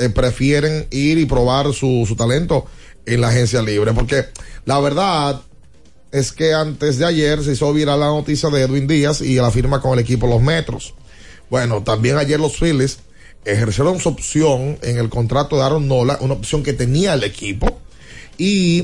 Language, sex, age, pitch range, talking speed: Spanish, male, 30-49, 120-145 Hz, 180 wpm